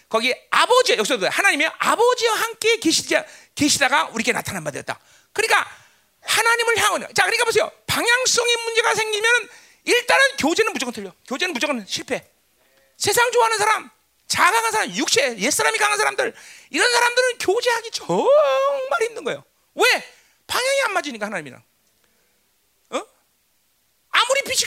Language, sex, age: Korean, male, 40-59